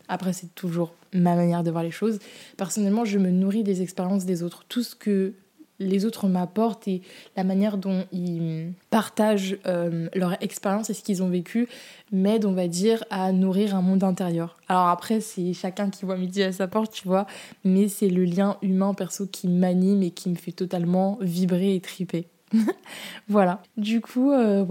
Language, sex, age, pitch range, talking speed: French, female, 20-39, 180-215 Hz, 190 wpm